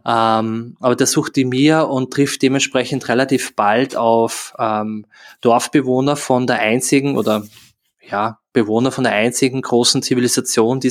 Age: 20-39